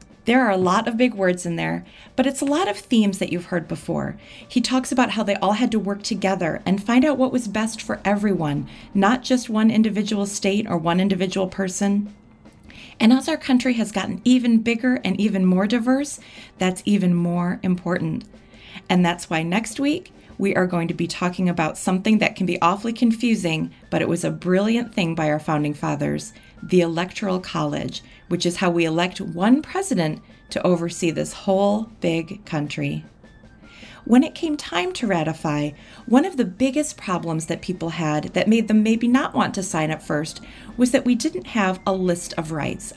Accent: American